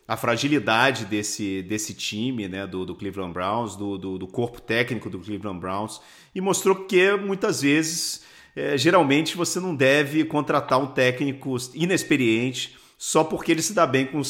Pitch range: 115-155 Hz